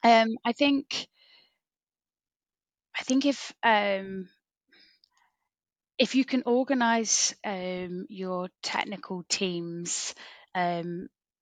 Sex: female